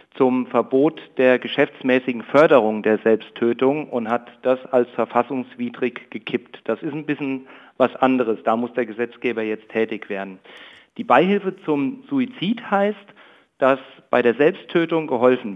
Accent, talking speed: German, 140 wpm